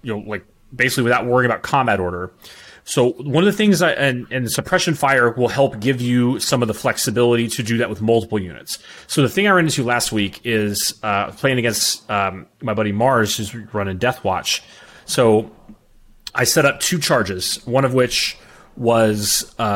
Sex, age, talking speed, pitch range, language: male, 30-49, 190 wpm, 110-130 Hz, English